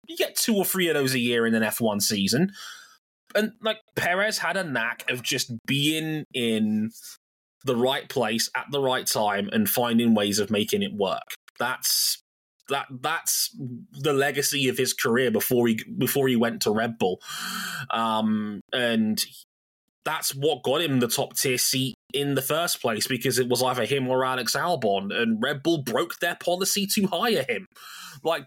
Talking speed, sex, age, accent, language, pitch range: 180 wpm, male, 20-39, British, English, 110-160 Hz